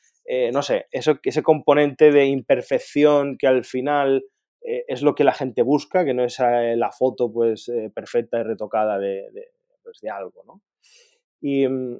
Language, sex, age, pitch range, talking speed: Spanish, male, 20-39, 115-165 Hz, 185 wpm